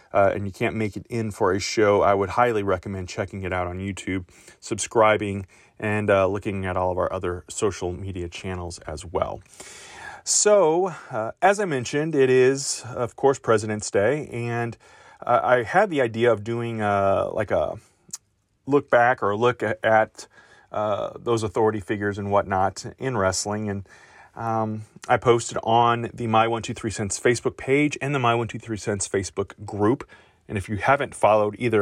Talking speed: 165 wpm